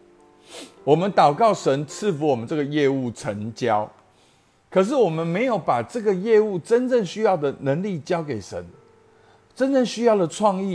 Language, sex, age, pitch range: Chinese, male, 50-69, 120-185 Hz